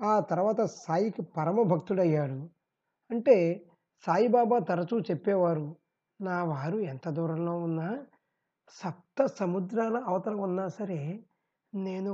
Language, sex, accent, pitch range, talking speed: Telugu, male, native, 175-220 Hz, 95 wpm